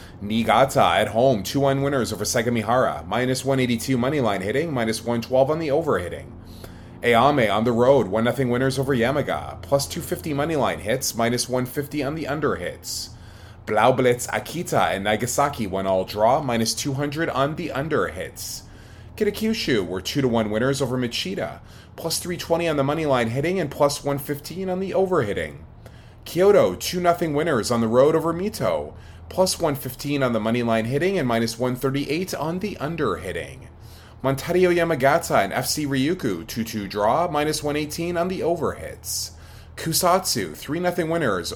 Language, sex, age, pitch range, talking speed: English, male, 20-39, 95-145 Hz, 160 wpm